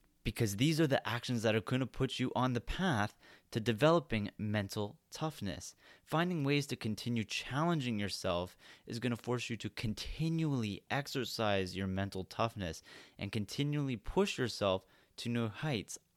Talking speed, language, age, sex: 155 wpm, English, 30-49, male